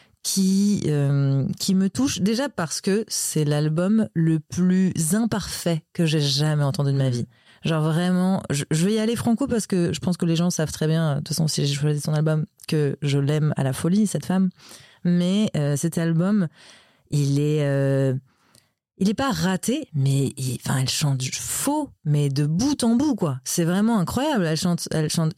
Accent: French